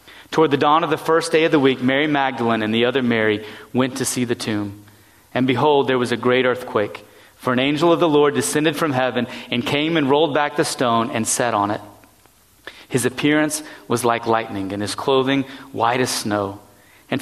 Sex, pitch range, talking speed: male, 115-155 Hz, 210 wpm